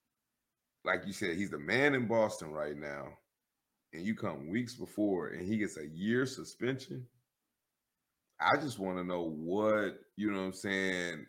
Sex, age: male, 30-49